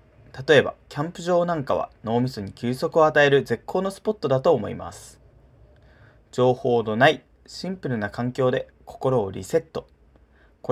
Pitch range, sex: 105-145 Hz, male